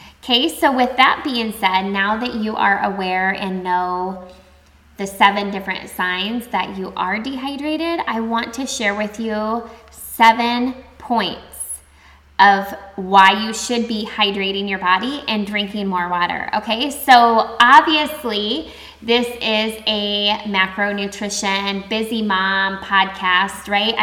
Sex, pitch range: female, 195-225 Hz